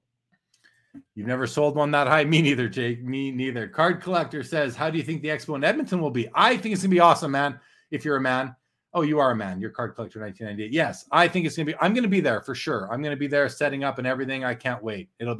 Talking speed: 265 wpm